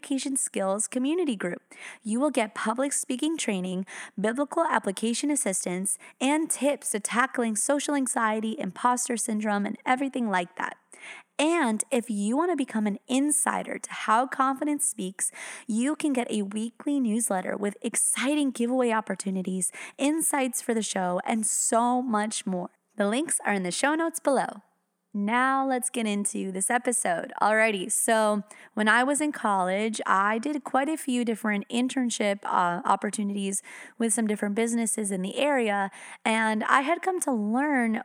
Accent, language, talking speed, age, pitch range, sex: American, English, 155 wpm, 20-39, 205-265 Hz, female